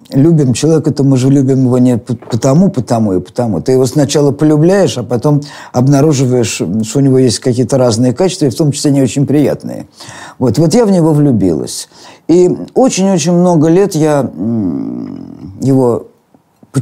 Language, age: Russian, 50-69